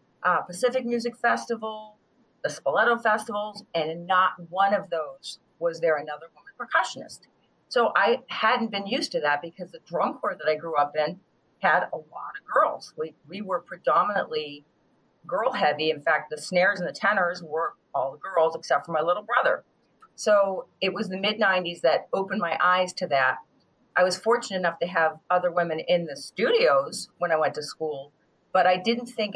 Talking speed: 185 wpm